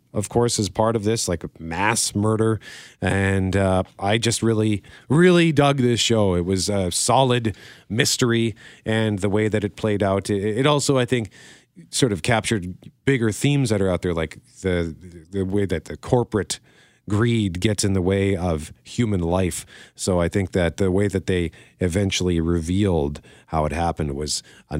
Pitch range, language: 95-130 Hz, English